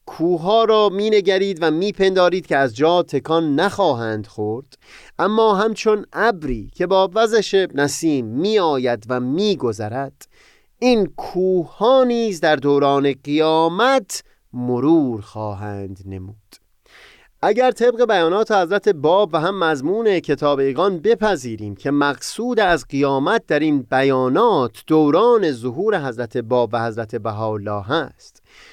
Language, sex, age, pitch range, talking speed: Persian, male, 30-49, 130-205 Hz, 125 wpm